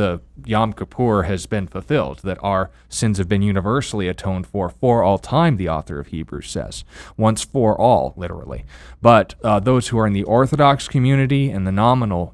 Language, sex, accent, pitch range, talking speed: English, male, American, 90-110 Hz, 185 wpm